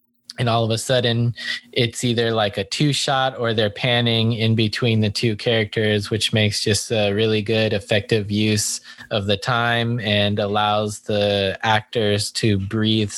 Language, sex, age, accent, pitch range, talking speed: English, male, 20-39, American, 105-120 Hz, 165 wpm